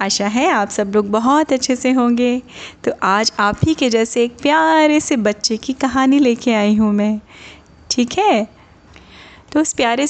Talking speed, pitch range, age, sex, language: 180 wpm, 205-270 Hz, 30-49, female, Hindi